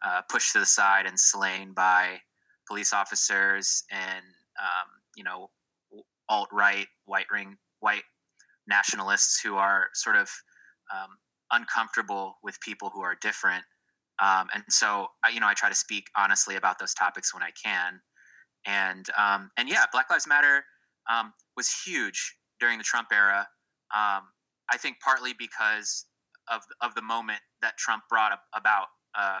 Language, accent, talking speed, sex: English, American, 155 wpm, male